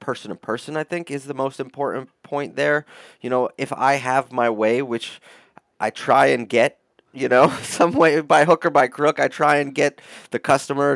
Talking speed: 210 wpm